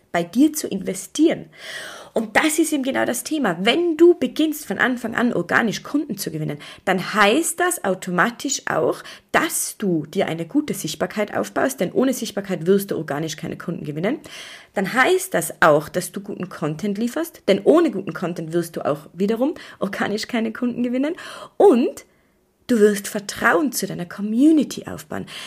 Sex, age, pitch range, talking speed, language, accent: female, 30-49, 185-270 Hz, 165 wpm, German, German